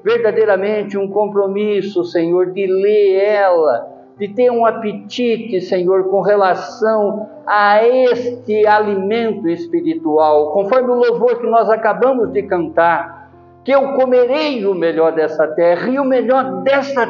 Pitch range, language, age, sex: 150-220 Hz, Portuguese, 60-79, male